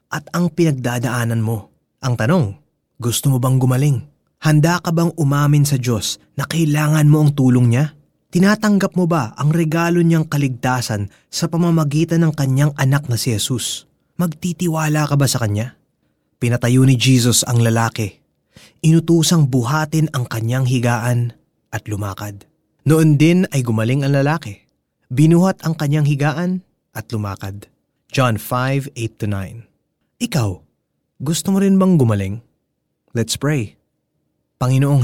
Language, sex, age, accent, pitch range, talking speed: Filipino, male, 20-39, native, 120-155 Hz, 135 wpm